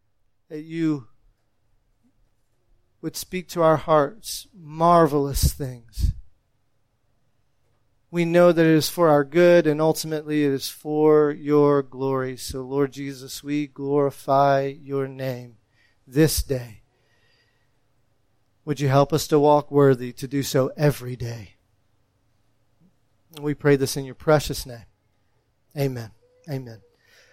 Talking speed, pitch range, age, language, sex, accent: 120 wpm, 125-175 Hz, 40-59, English, male, American